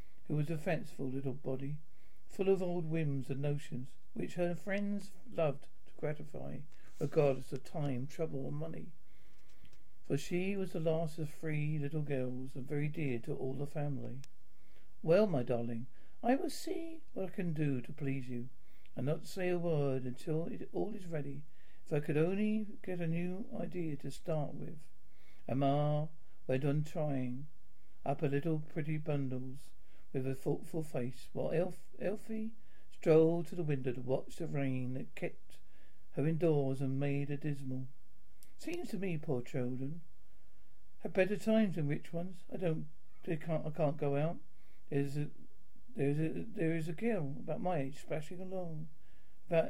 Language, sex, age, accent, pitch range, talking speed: English, male, 60-79, British, 135-170 Hz, 170 wpm